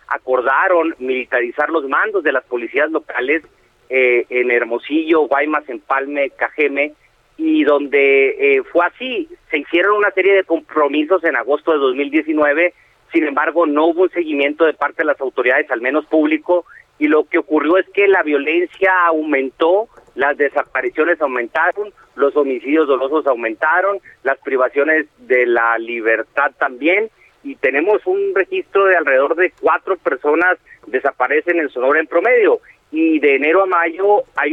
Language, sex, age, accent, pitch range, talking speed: Spanish, male, 40-59, Mexican, 145-200 Hz, 150 wpm